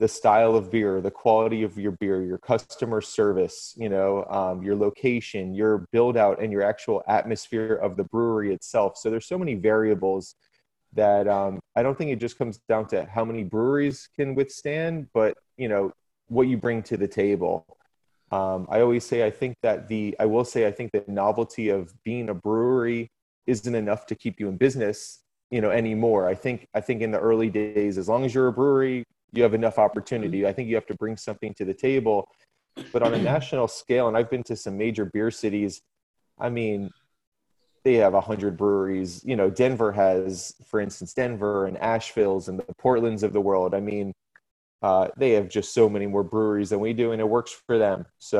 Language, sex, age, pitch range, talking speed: English, male, 30-49, 100-115 Hz, 210 wpm